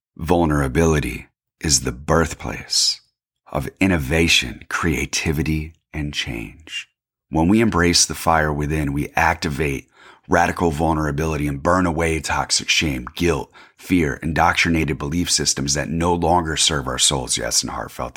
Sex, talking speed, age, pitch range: male, 125 wpm, 30-49, 75-90 Hz